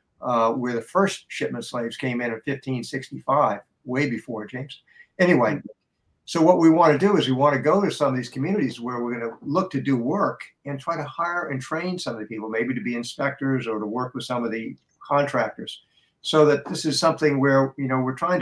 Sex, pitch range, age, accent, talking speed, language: male, 120-145 Hz, 60-79, American, 230 wpm, English